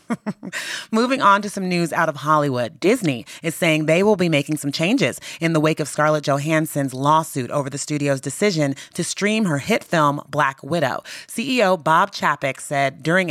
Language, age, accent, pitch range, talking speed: English, 30-49, American, 150-195 Hz, 180 wpm